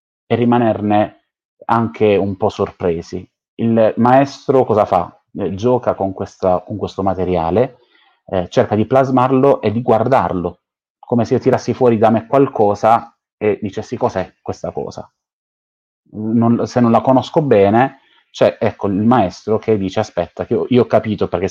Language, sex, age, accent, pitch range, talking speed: Italian, male, 30-49, native, 95-115 Hz, 155 wpm